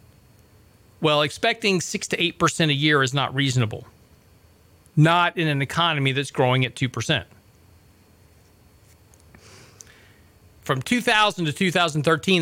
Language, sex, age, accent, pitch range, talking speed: English, male, 40-59, American, 105-165 Hz, 95 wpm